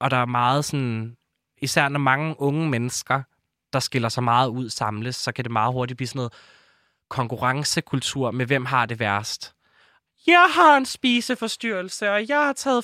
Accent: native